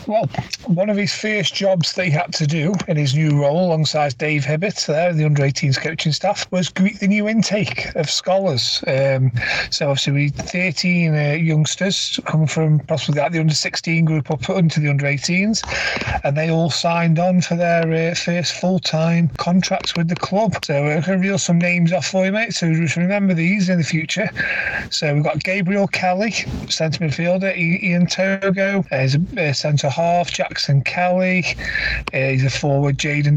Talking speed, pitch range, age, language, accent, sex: 185 wpm, 145-180 Hz, 30-49, English, British, male